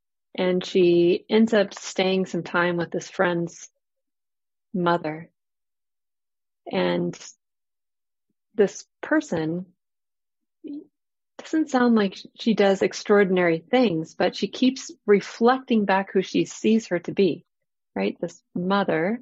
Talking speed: 110 wpm